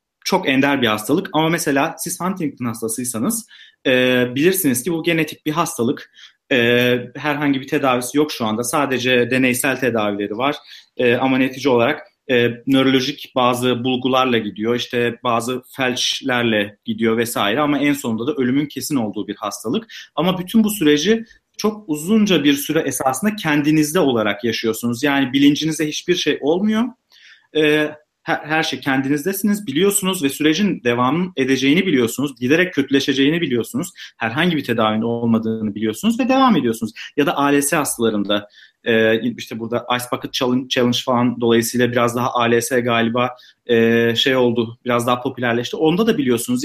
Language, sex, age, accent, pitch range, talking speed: Turkish, male, 40-59, native, 120-155 Hz, 140 wpm